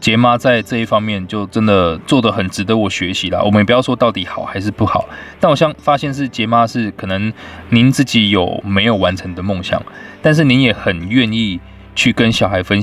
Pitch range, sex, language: 95-115 Hz, male, Chinese